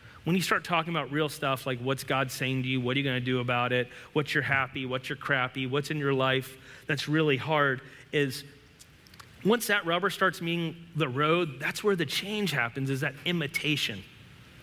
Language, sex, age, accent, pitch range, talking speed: English, male, 30-49, American, 130-170 Hz, 200 wpm